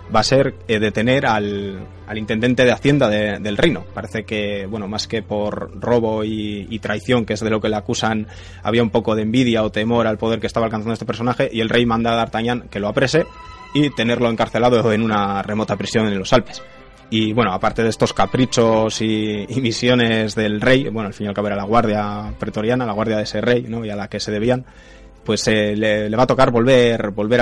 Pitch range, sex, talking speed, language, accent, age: 100-120 Hz, male, 230 wpm, Spanish, Spanish, 20-39